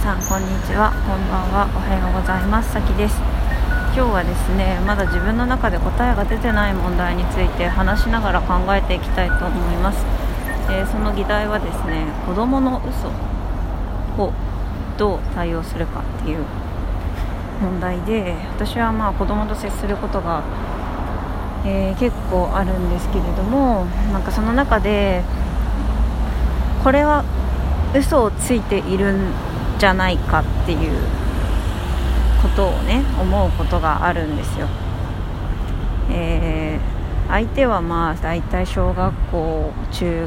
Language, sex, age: Japanese, female, 20-39